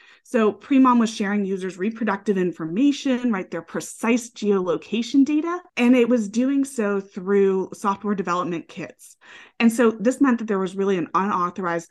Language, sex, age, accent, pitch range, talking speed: English, female, 20-39, American, 180-235 Hz, 155 wpm